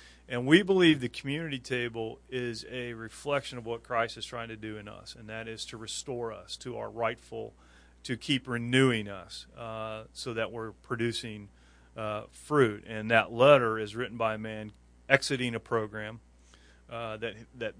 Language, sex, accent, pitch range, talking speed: English, male, American, 105-125 Hz, 175 wpm